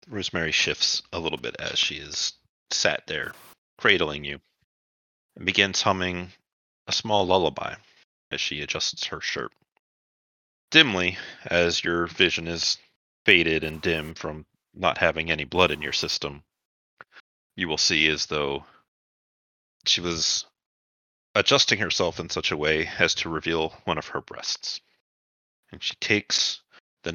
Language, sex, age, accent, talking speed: English, male, 30-49, American, 140 wpm